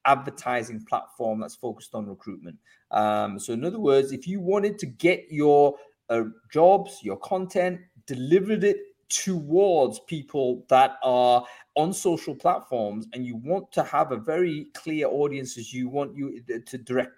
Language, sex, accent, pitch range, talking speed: English, male, British, 115-180 Hz, 155 wpm